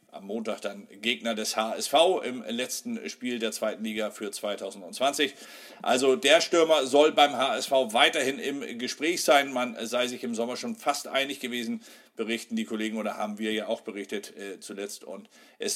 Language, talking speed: German, 175 wpm